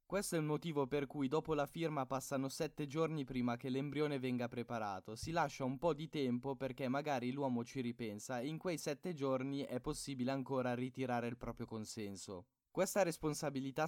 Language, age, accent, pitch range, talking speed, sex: Italian, 20-39, native, 125-150 Hz, 180 wpm, male